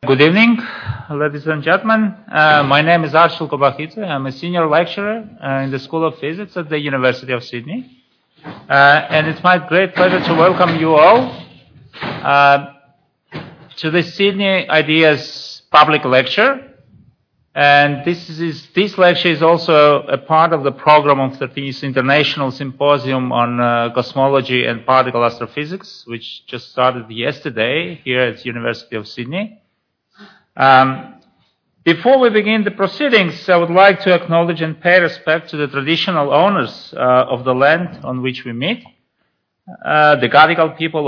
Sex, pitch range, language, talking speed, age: male, 135-175 Hz, English, 155 wpm, 40-59